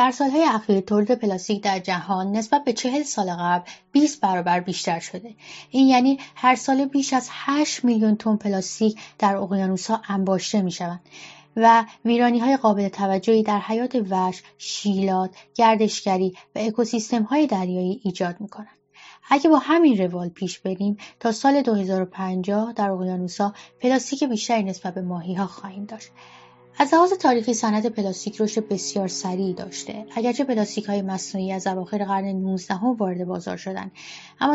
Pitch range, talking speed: 190-235 Hz, 140 wpm